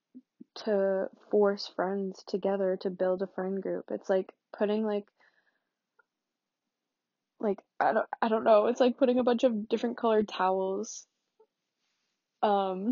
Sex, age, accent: female, 10-29, American